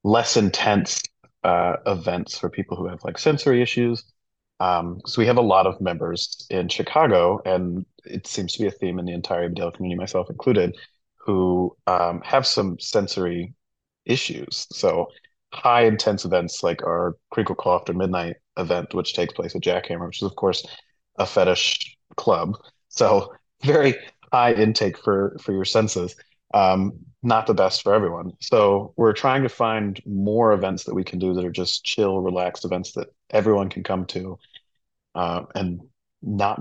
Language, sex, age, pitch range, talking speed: English, male, 30-49, 90-115 Hz, 170 wpm